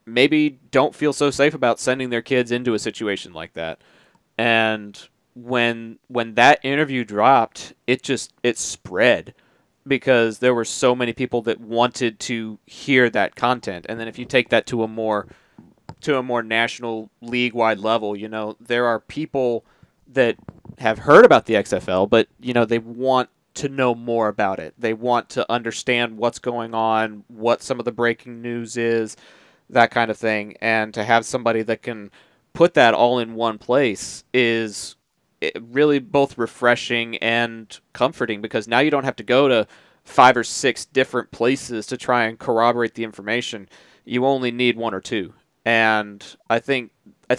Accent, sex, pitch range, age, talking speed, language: American, male, 110-125 Hz, 30-49, 175 wpm, English